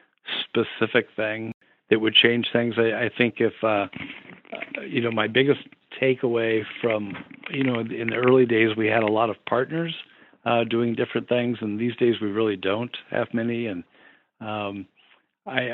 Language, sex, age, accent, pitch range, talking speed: English, male, 50-69, American, 105-120 Hz, 170 wpm